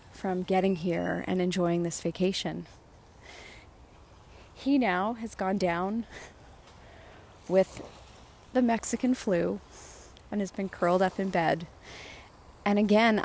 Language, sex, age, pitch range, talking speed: English, female, 30-49, 180-220 Hz, 115 wpm